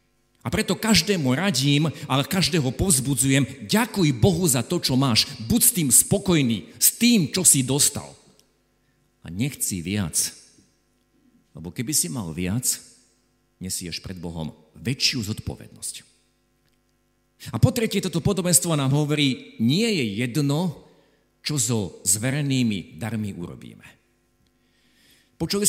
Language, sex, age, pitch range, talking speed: Slovak, male, 50-69, 115-155 Hz, 120 wpm